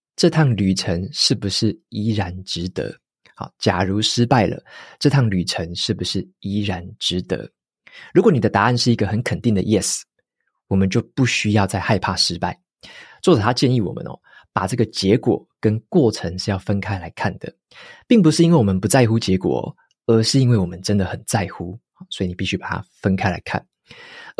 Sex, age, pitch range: male, 20-39, 95-125 Hz